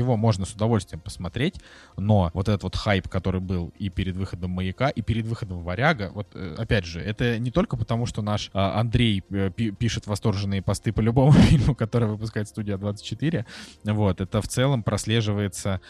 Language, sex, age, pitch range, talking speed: Russian, male, 20-39, 95-115 Hz, 175 wpm